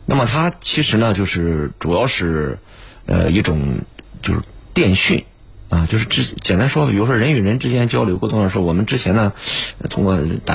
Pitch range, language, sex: 90-125 Hz, Chinese, male